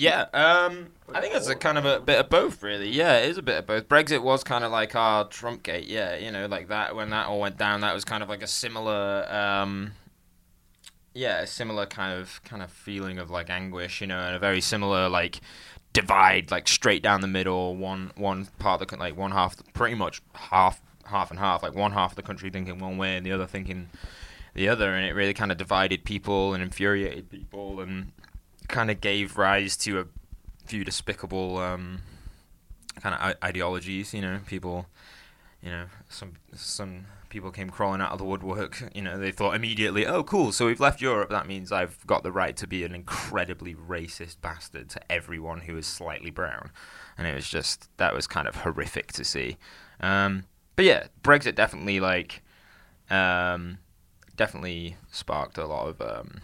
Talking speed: 200 wpm